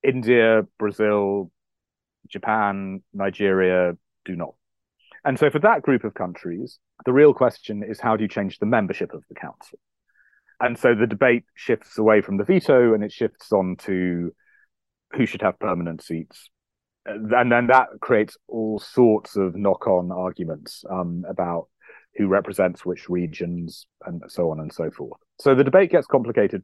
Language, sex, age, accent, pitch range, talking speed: English, male, 30-49, British, 90-125 Hz, 160 wpm